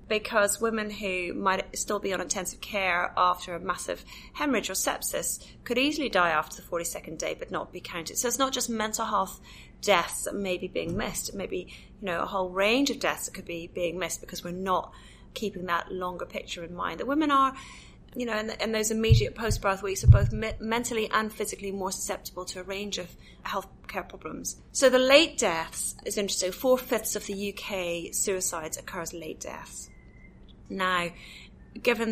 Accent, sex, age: British, female, 30-49